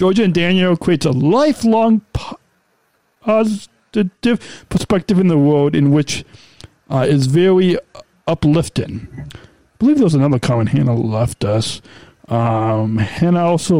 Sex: male